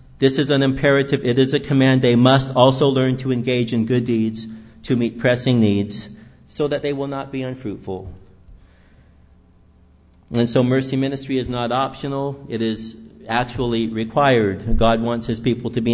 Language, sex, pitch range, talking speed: English, male, 120-145 Hz, 170 wpm